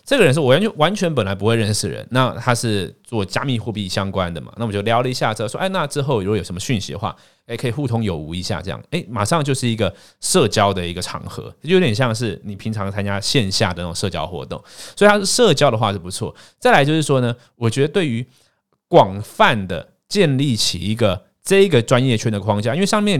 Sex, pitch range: male, 100-135 Hz